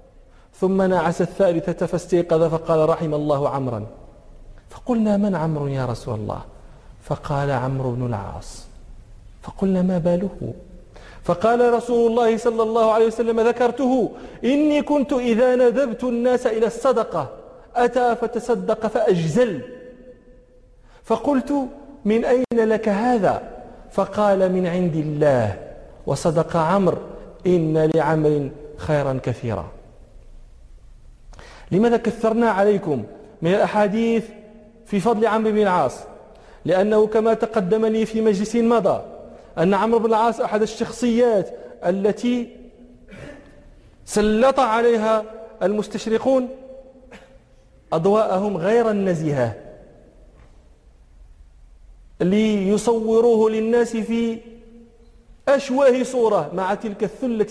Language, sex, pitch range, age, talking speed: English, male, 170-235 Hz, 40-59, 95 wpm